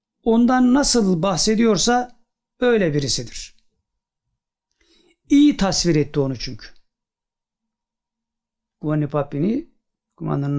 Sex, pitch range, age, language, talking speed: male, 155-235 Hz, 60-79, Turkish, 70 wpm